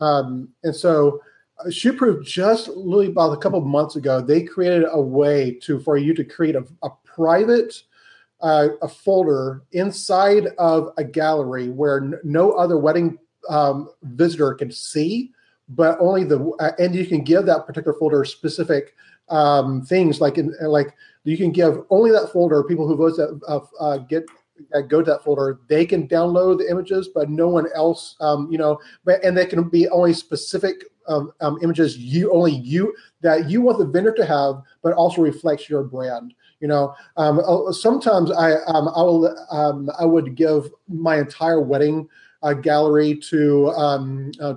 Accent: American